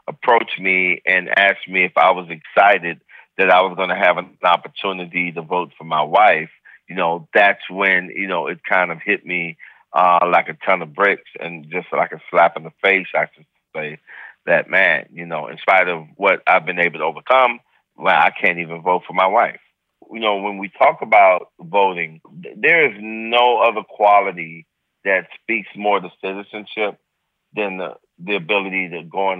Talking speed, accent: 195 wpm, American